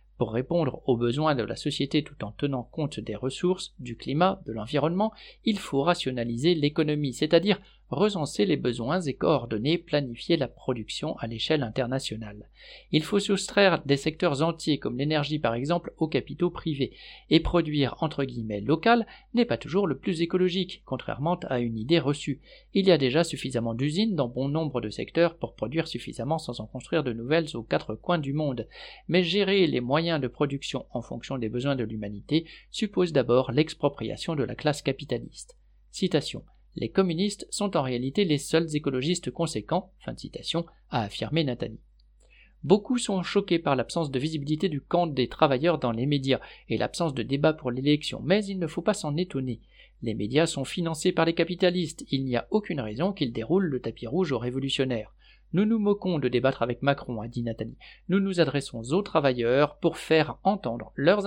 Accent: French